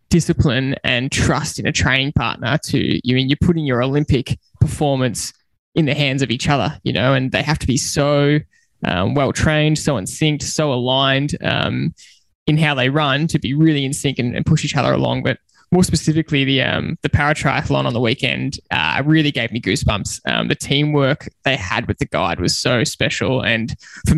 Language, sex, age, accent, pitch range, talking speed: English, male, 20-39, Australian, 125-155 Hz, 205 wpm